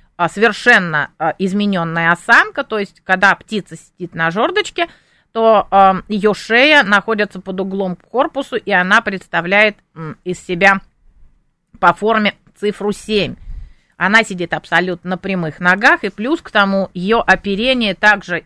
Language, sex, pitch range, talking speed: Russian, female, 175-225 Hz, 130 wpm